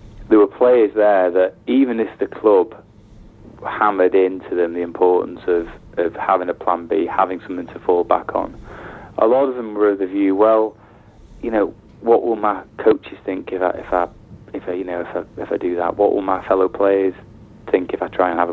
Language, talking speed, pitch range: English, 215 wpm, 90-105 Hz